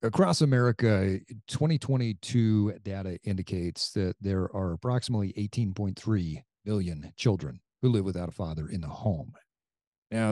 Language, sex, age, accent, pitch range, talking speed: English, male, 40-59, American, 95-130 Hz, 120 wpm